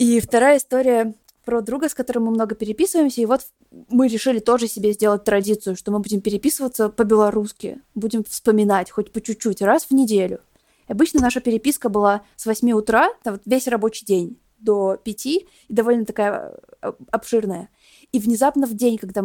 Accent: native